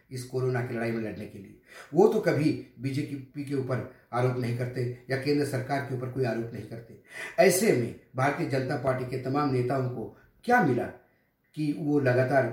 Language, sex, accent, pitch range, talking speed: Hindi, male, native, 120-145 Hz, 190 wpm